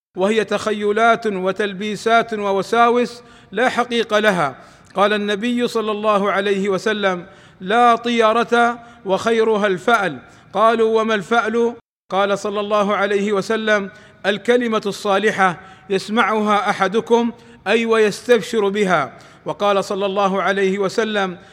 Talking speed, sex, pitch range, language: 105 wpm, male, 195-225 Hz, Arabic